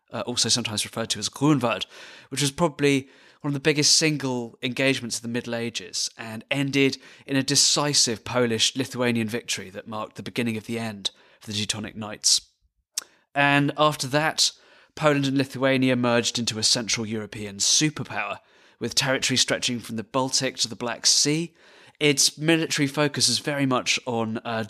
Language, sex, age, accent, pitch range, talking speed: German, male, 30-49, British, 110-135 Hz, 165 wpm